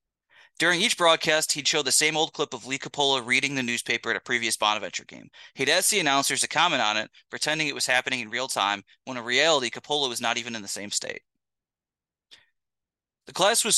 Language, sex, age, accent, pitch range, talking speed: English, male, 30-49, American, 120-155 Hz, 215 wpm